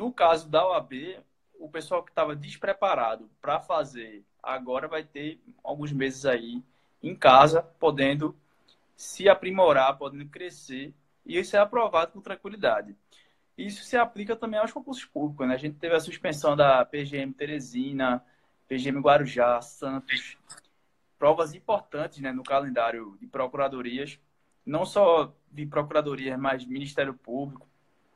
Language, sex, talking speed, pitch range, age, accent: Portuguese, male, 135 wpm, 140-185 Hz, 20-39, Brazilian